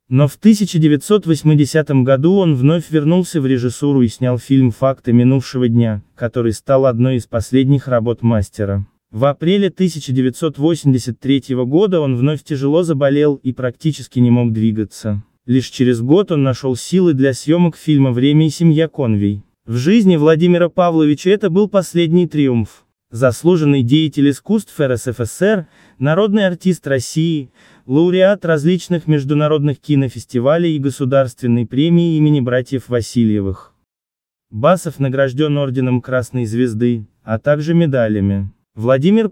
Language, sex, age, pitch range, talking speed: Russian, male, 20-39, 120-160 Hz, 125 wpm